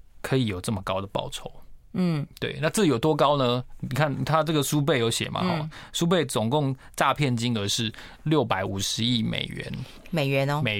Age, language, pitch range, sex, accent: 20-39, Chinese, 120-170 Hz, male, native